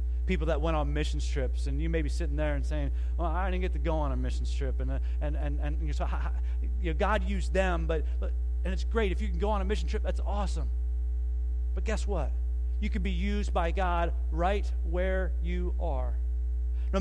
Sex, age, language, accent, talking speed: male, 30-49, English, American, 235 wpm